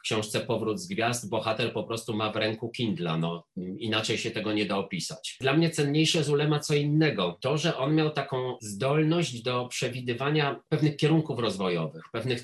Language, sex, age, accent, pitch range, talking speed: Polish, male, 40-59, native, 110-135 Hz, 180 wpm